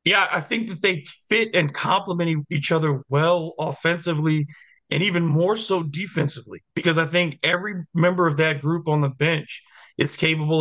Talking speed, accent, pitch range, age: 170 wpm, American, 155-175 Hz, 30-49